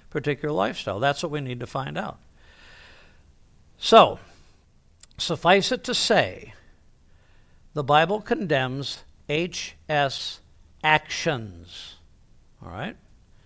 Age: 60-79